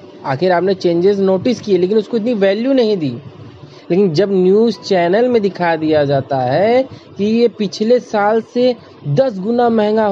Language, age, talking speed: Hindi, 20-39, 165 wpm